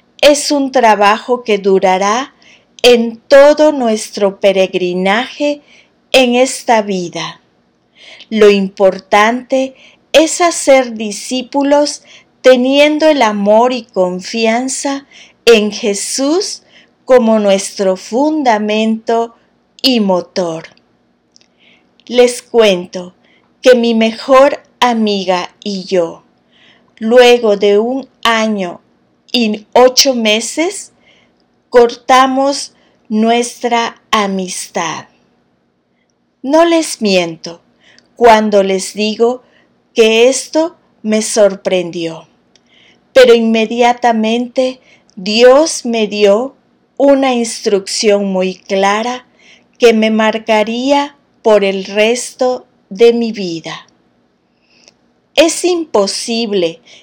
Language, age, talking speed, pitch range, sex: Spanish, 40-59, 80 wpm, 200-255 Hz, female